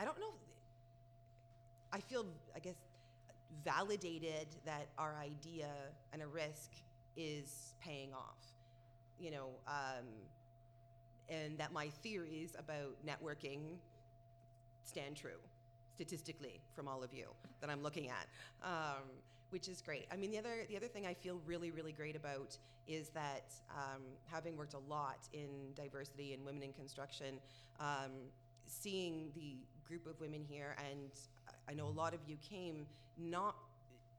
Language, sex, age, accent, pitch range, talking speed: English, female, 30-49, American, 135-165 Hz, 145 wpm